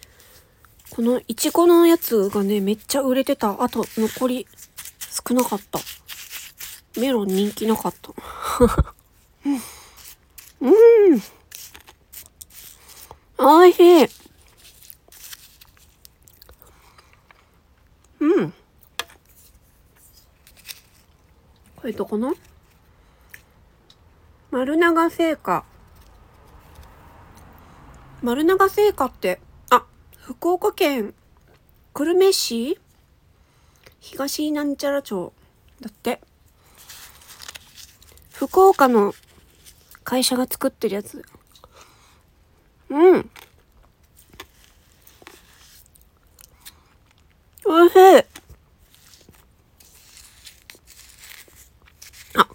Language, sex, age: Japanese, female, 40-59